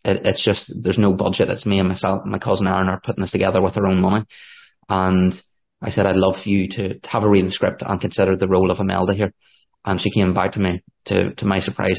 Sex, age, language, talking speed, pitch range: male, 20-39, English, 250 wpm, 95-100 Hz